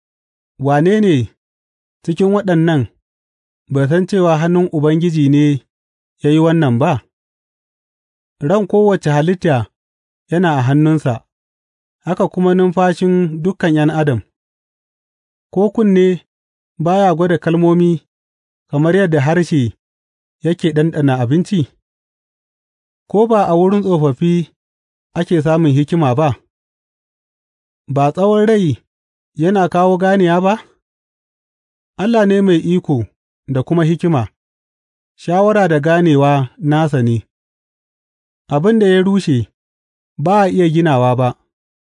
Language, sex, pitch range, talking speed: English, male, 115-180 Hz, 90 wpm